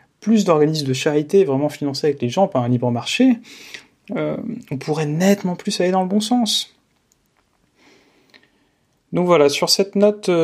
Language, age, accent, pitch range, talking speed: French, 30-49, French, 135-195 Hz, 160 wpm